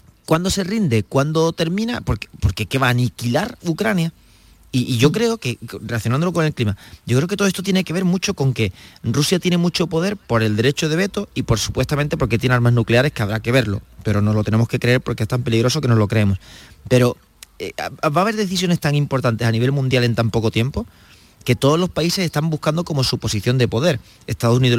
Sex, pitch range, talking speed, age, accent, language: male, 115-160 Hz, 230 wpm, 30-49, Spanish, Spanish